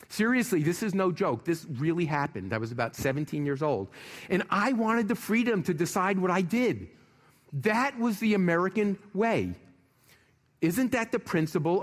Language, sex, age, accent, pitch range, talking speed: English, male, 50-69, American, 130-185 Hz, 170 wpm